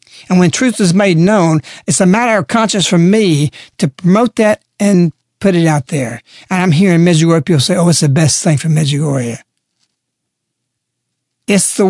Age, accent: 60-79, American